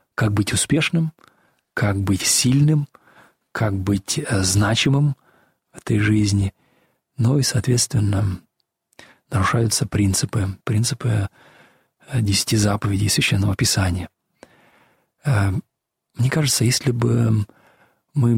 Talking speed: 90 wpm